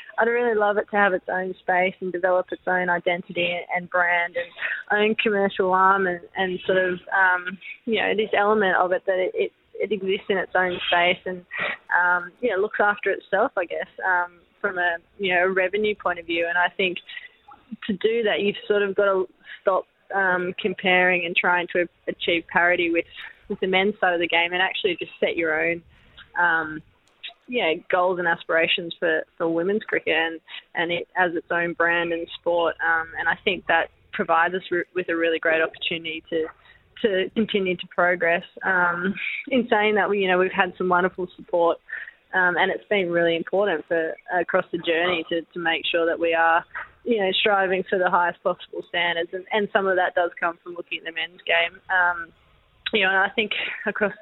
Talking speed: 205 wpm